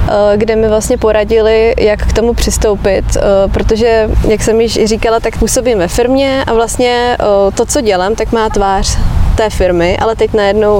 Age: 20-39